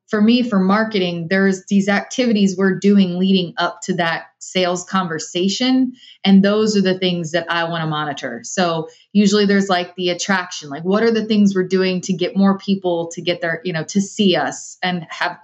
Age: 30-49